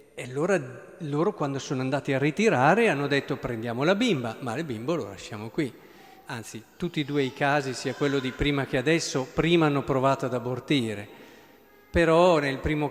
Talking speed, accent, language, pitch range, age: 180 wpm, native, Italian, 125-165 Hz, 50-69